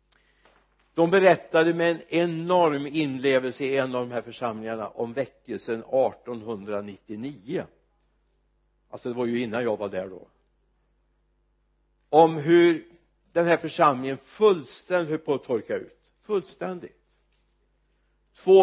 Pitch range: 125-175 Hz